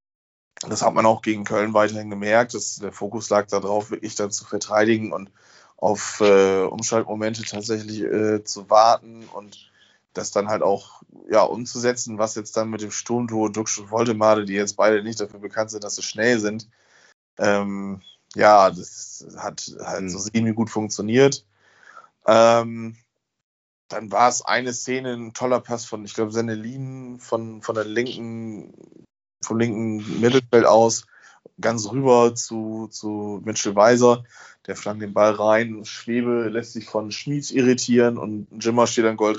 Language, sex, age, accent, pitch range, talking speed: German, male, 20-39, German, 105-120 Hz, 155 wpm